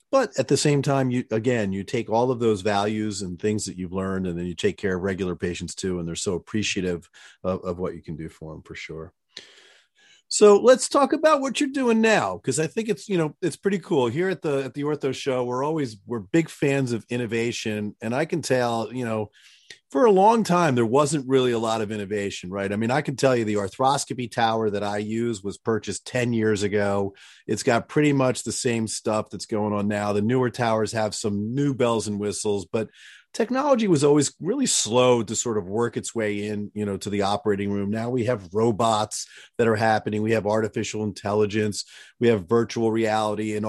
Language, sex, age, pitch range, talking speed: English, male, 40-59, 105-130 Hz, 220 wpm